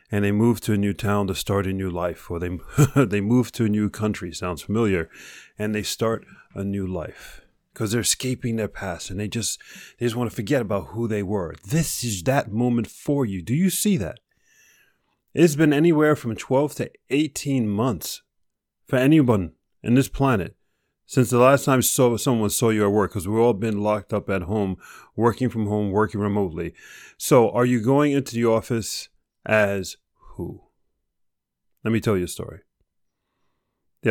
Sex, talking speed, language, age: male, 185 wpm, English, 30-49